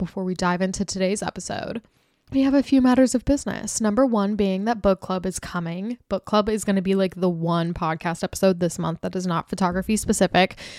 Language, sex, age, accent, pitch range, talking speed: English, female, 10-29, American, 180-225 Hz, 215 wpm